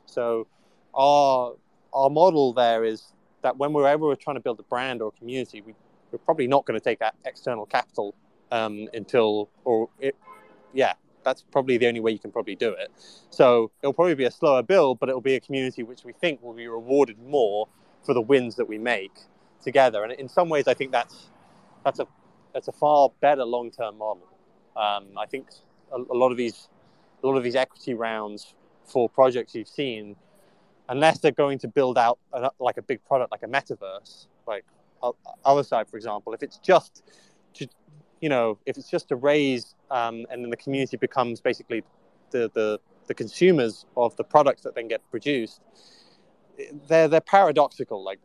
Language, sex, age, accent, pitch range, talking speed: English, male, 20-39, British, 115-145 Hz, 200 wpm